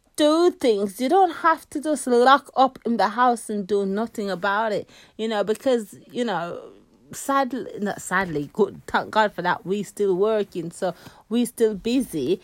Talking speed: 180 wpm